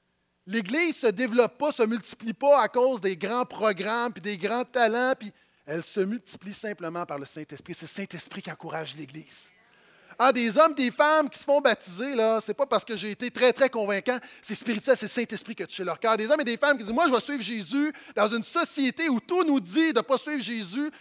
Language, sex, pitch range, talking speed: French, male, 205-265 Hz, 245 wpm